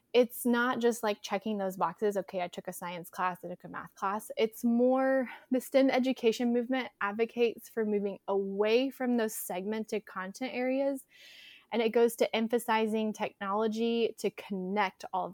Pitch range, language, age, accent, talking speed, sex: 190-240 Hz, English, 20-39, American, 170 wpm, female